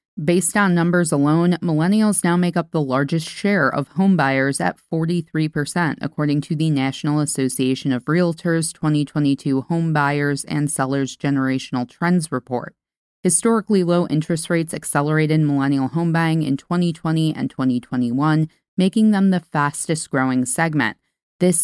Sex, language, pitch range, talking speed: female, English, 140-175 Hz, 135 wpm